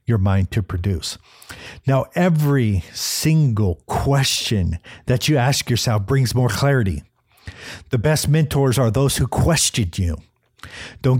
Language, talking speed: English, 130 wpm